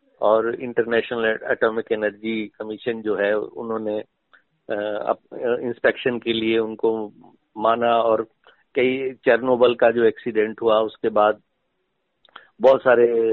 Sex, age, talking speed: male, 50-69, 110 wpm